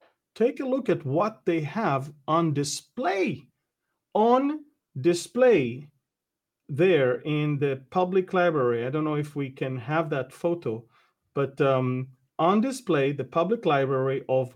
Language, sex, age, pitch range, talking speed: English, male, 40-59, 135-210 Hz, 135 wpm